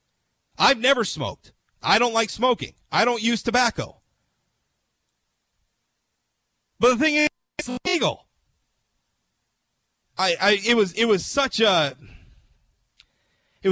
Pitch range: 155-195 Hz